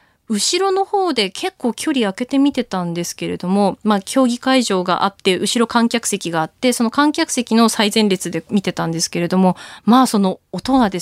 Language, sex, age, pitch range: Japanese, female, 20-39, 190-270 Hz